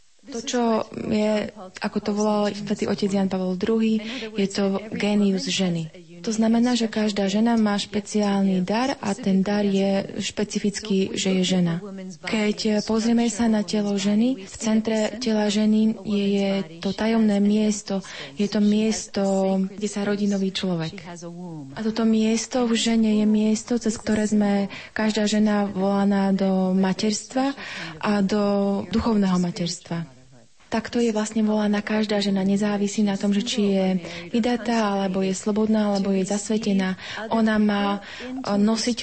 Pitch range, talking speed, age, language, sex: 195-220 Hz, 140 wpm, 20-39, Slovak, female